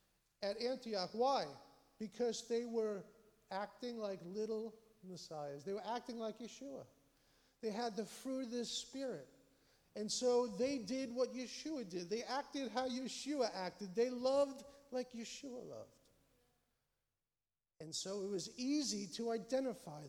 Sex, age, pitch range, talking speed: male, 50-69, 200-250 Hz, 135 wpm